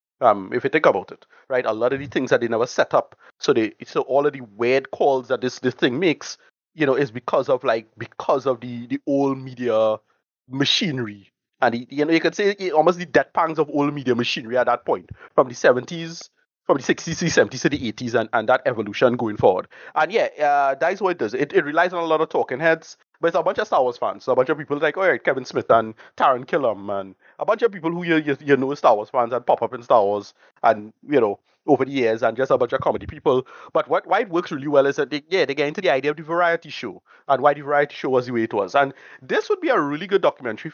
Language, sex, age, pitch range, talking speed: English, male, 30-49, 125-165 Hz, 275 wpm